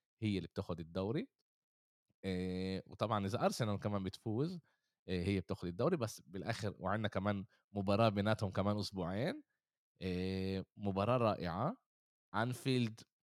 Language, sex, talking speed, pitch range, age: Arabic, male, 105 wpm, 95-115 Hz, 20-39